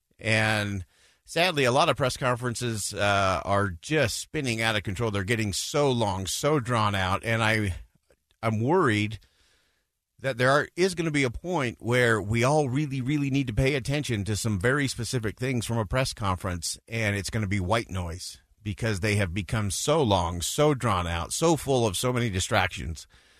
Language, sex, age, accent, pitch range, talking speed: English, male, 50-69, American, 100-135 Hz, 190 wpm